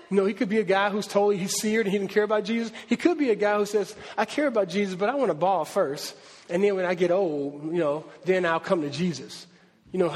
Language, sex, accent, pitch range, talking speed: English, male, American, 165-215 Hz, 290 wpm